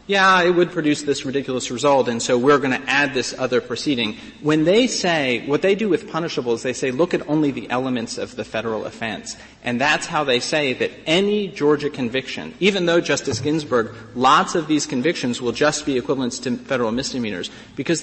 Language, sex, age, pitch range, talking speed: English, male, 30-49, 135-185 Hz, 200 wpm